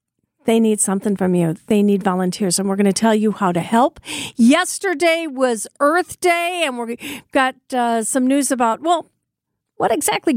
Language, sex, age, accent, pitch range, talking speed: English, female, 50-69, American, 200-275 Hz, 180 wpm